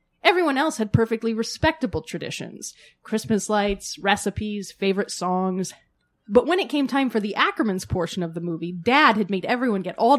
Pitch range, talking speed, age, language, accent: 190-260 Hz, 170 wpm, 20-39, English, American